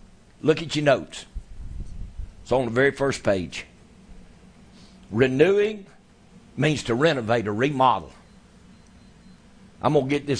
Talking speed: 115 wpm